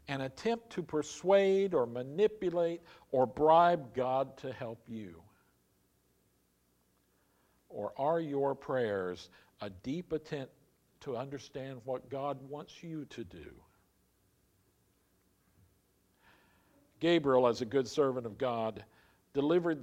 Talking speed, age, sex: 105 wpm, 50-69, male